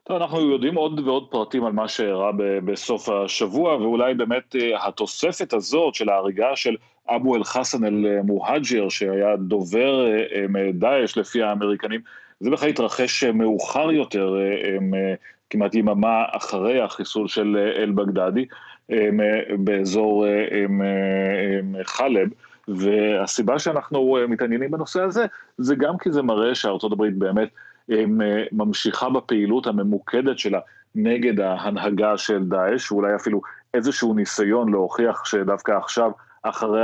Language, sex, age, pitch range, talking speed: Hebrew, male, 40-59, 100-120 Hz, 110 wpm